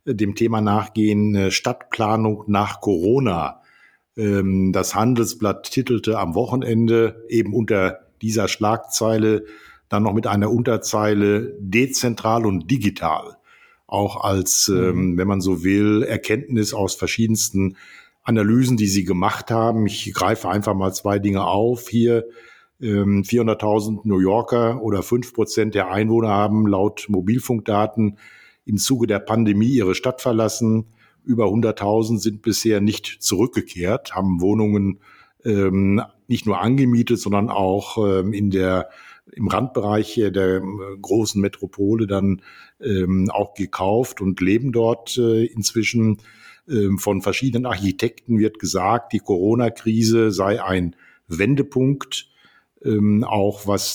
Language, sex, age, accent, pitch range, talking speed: German, male, 50-69, German, 100-115 Hz, 120 wpm